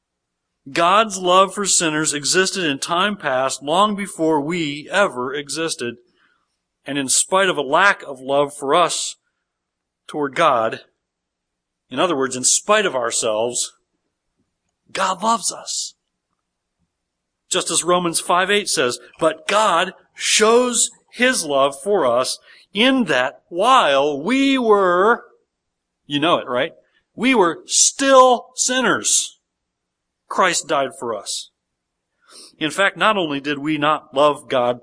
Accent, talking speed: American, 125 wpm